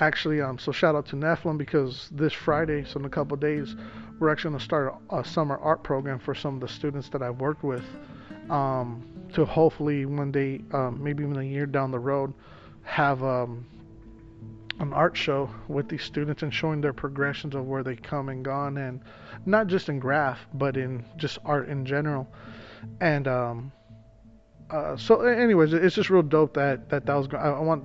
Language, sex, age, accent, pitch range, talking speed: English, male, 30-49, American, 125-145 Hz, 195 wpm